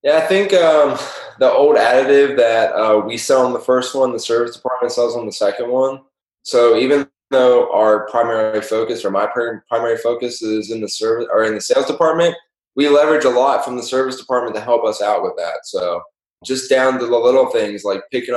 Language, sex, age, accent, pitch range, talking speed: English, male, 20-39, American, 115-155 Hz, 210 wpm